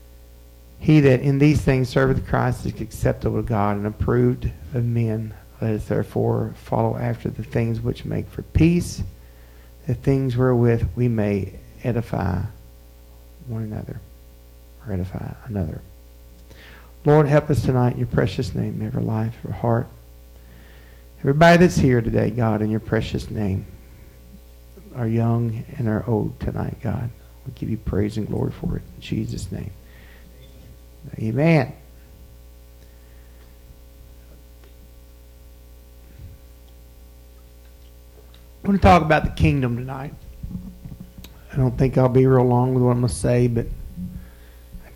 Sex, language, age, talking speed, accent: male, English, 50-69, 135 wpm, American